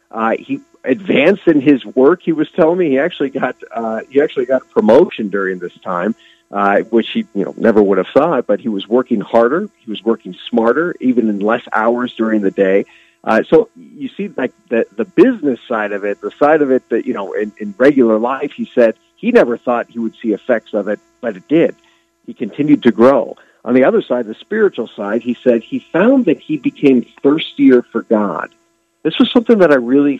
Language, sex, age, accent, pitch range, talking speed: English, male, 50-69, American, 110-155 Hz, 220 wpm